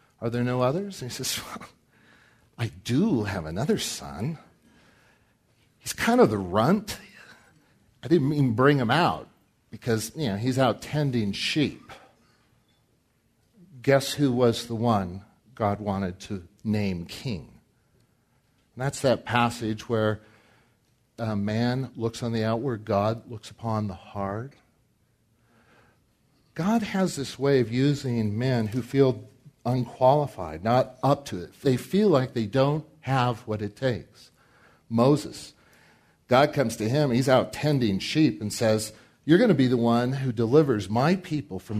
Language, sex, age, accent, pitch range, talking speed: English, male, 50-69, American, 110-135 Hz, 145 wpm